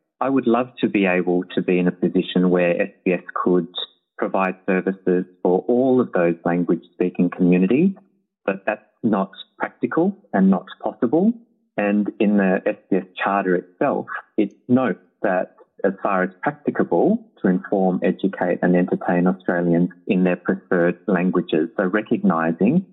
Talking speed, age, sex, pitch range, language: 145 wpm, 30-49, male, 90-120 Hz, Bulgarian